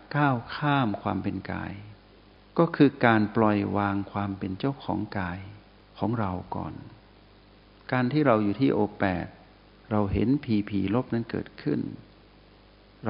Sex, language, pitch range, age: male, Thai, 100-115 Hz, 60-79